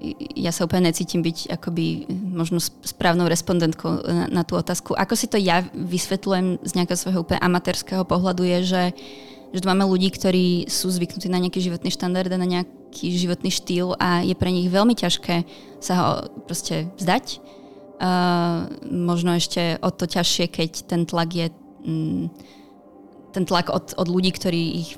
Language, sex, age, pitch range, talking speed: Czech, female, 20-39, 170-185 Hz, 165 wpm